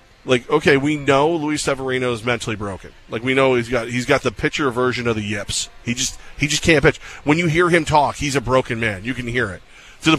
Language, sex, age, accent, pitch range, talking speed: English, male, 20-39, American, 115-145 Hz, 255 wpm